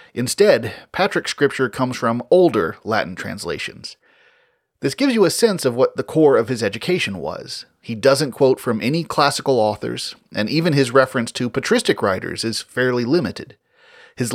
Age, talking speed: 30-49, 165 wpm